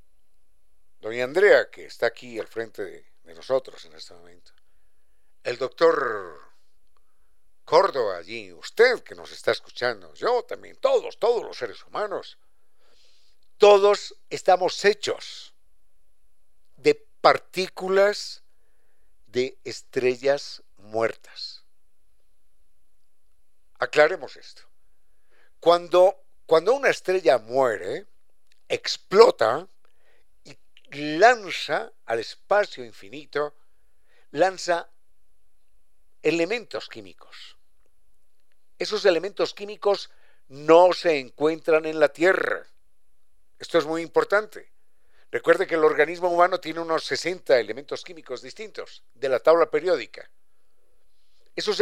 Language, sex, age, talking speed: Spanish, male, 60-79, 95 wpm